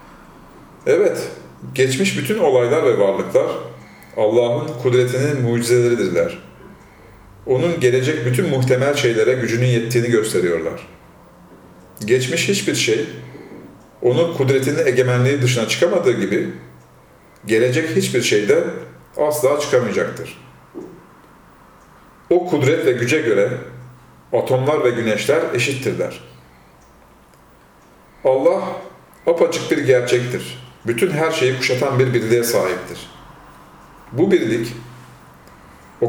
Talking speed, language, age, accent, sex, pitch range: 90 wpm, Turkish, 40-59, native, male, 115-140 Hz